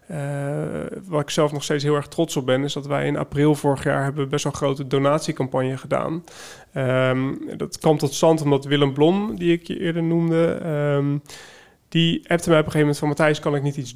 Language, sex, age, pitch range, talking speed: Dutch, male, 30-49, 140-165 Hz, 220 wpm